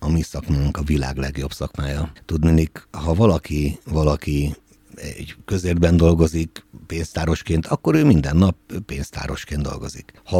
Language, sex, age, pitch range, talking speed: Hungarian, male, 60-79, 80-95 Hz, 120 wpm